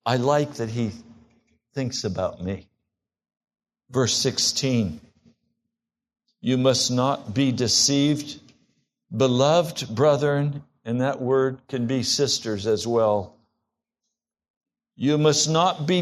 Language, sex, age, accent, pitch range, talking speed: English, male, 60-79, American, 120-160 Hz, 105 wpm